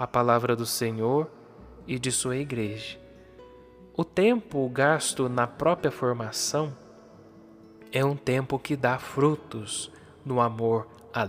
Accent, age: Brazilian, 20-39